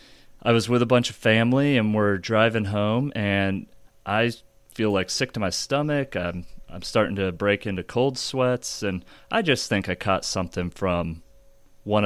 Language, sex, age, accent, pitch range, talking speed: English, male, 30-49, American, 90-110 Hz, 180 wpm